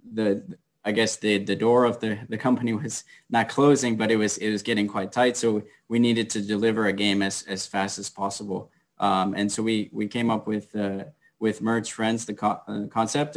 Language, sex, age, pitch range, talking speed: English, male, 20-39, 100-115 Hz, 220 wpm